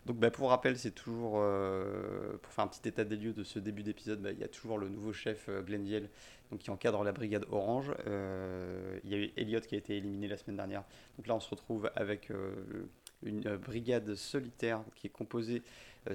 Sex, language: male, French